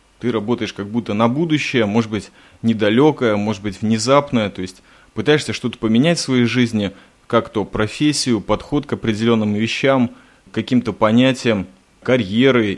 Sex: male